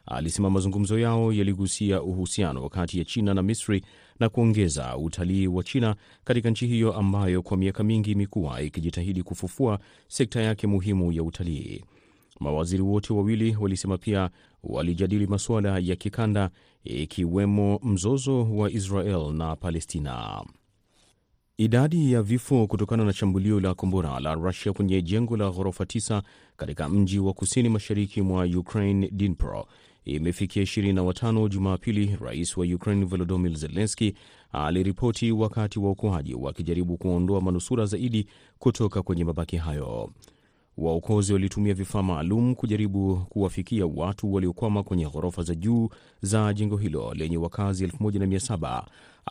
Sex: male